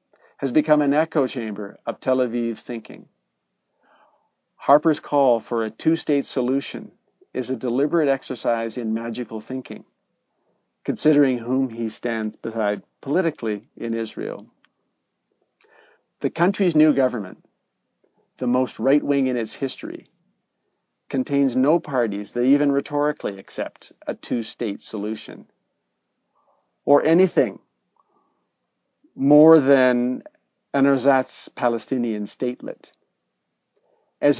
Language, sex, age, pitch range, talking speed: English, male, 50-69, 115-145 Hz, 105 wpm